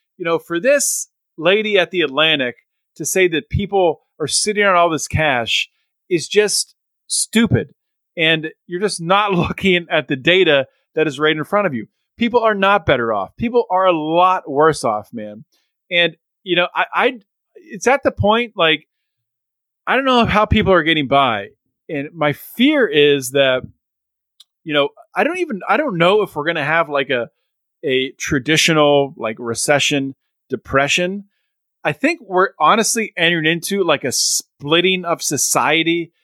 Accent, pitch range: American, 145-190 Hz